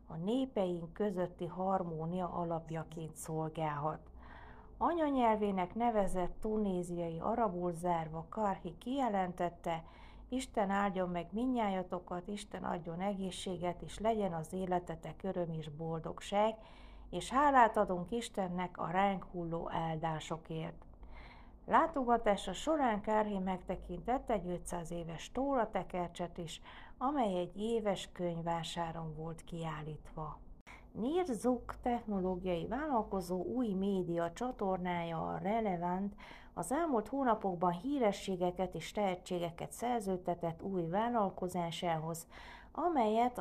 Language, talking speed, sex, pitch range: Hungarian, 95 wpm, female, 170-220 Hz